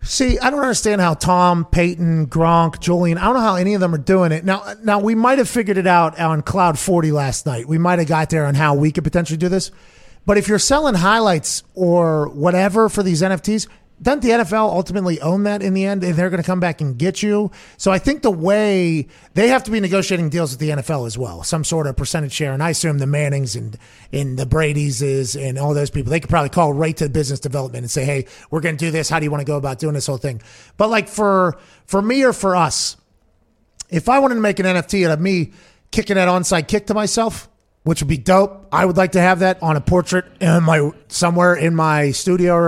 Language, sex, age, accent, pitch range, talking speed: English, male, 30-49, American, 155-195 Hz, 250 wpm